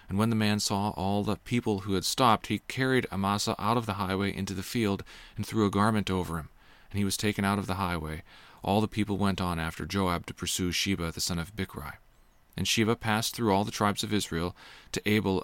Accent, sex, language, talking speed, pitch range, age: American, male, English, 235 wpm, 95-110 Hz, 40-59